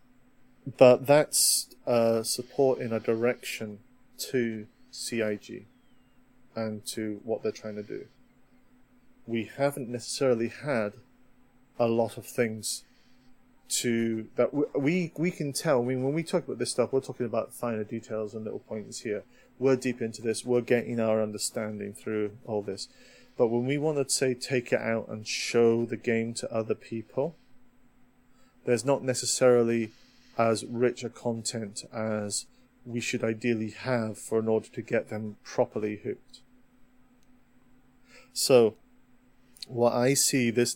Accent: British